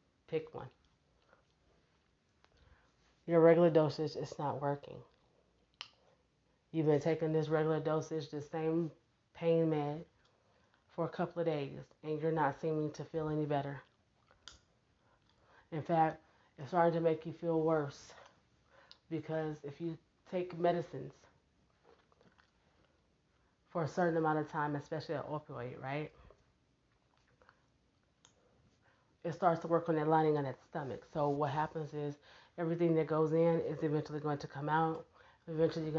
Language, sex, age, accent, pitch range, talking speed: English, female, 20-39, American, 150-165 Hz, 135 wpm